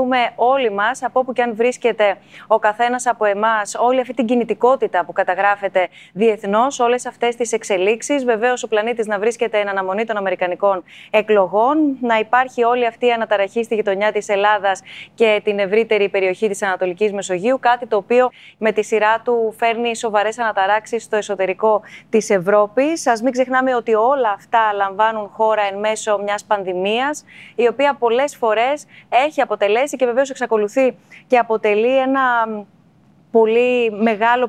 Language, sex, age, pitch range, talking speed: Greek, female, 20-39, 200-240 Hz, 155 wpm